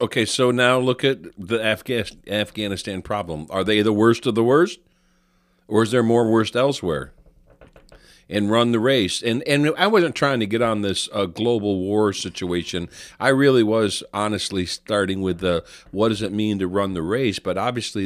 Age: 50-69